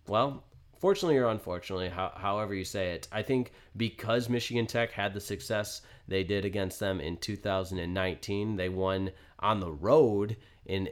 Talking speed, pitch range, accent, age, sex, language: 160 wpm, 90-120 Hz, American, 30-49, male, English